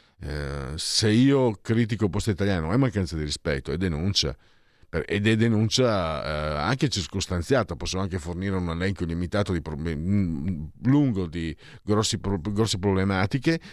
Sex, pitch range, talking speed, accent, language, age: male, 90-125 Hz, 155 wpm, native, Italian, 50-69